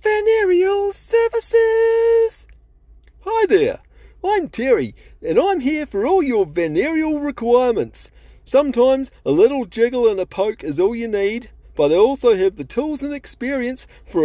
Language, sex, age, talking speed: English, male, 40-59, 145 wpm